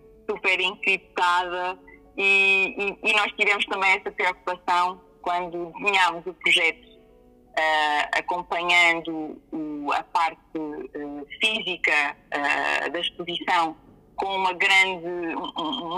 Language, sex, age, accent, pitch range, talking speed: Portuguese, female, 20-39, Brazilian, 170-205 Hz, 105 wpm